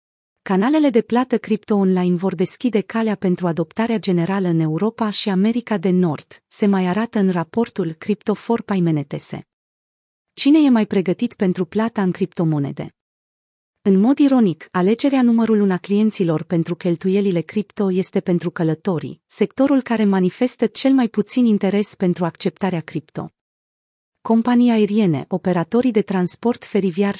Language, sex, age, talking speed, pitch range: Romanian, female, 30-49, 135 wpm, 180-225 Hz